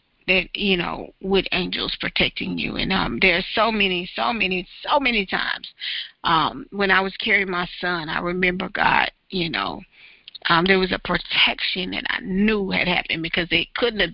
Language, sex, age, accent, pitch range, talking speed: English, female, 40-59, American, 185-220 Hz, 185 wpm